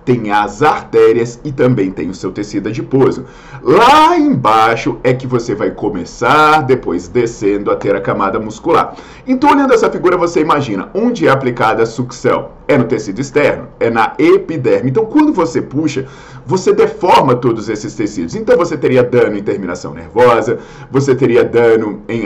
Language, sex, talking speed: Portuguese, male, 165 wpm